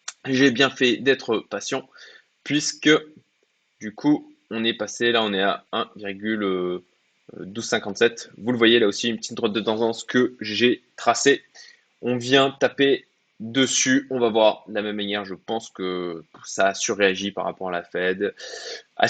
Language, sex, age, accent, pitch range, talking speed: French, male, 20-39, French, 100-130 Hz, 165 wpm